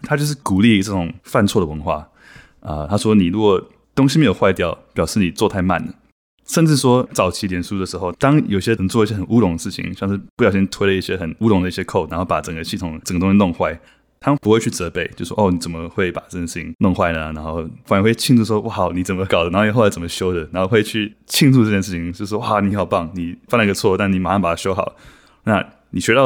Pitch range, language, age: 90-110 Hz, Chinese, 20-39